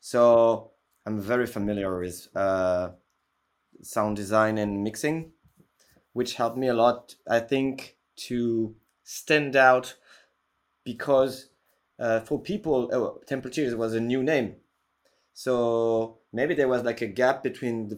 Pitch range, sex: 110-135 Hz, male